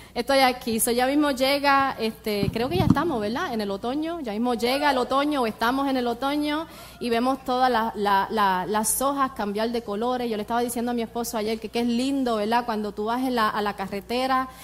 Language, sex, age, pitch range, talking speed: English, female, 30-49, 225-280 Hz, 235 wpm